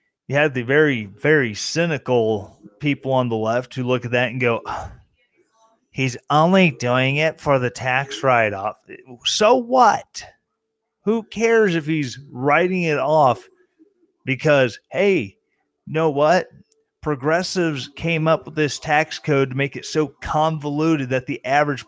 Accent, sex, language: American, male, English